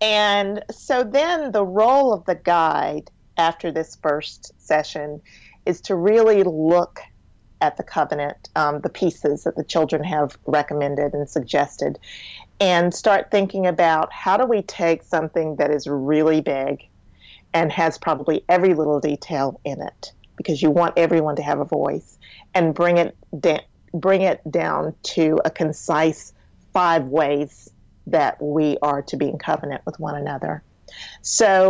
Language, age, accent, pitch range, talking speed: English, 40-59, American, 145-180 Hz, 150 wpm